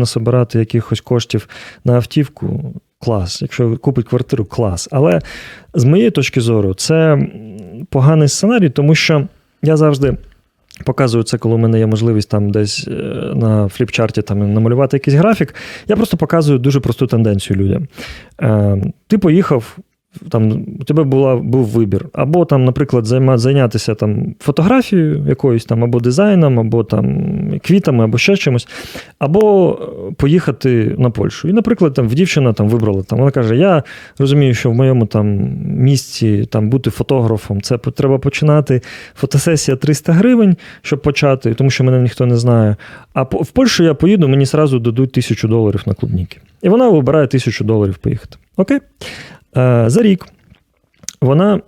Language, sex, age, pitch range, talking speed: Ukrainian, male, 30-49, 115-155 Hz, 150 wpm